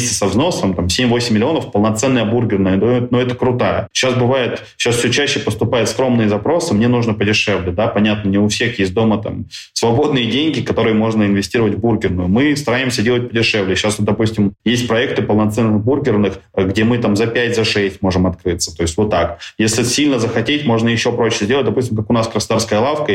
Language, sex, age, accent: Russian, male, 20-39, native